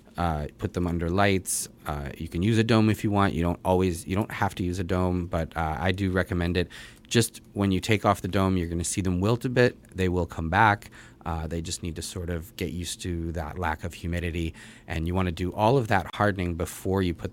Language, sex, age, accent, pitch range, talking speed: English, male, 30-49, American, 85-110 Hz, 260 wpm